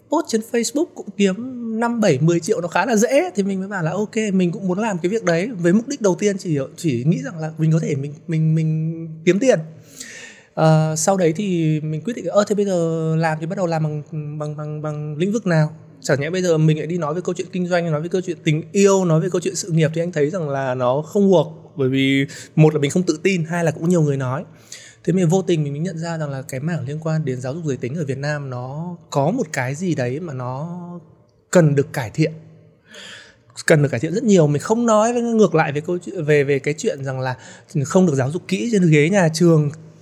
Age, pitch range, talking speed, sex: 20-39, 150-185 Hz, 265 wpm, male